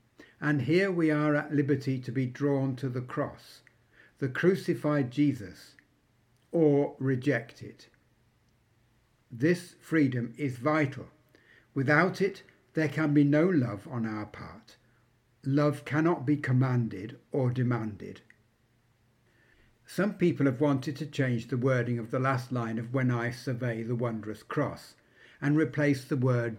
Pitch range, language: 120-145 Hz, English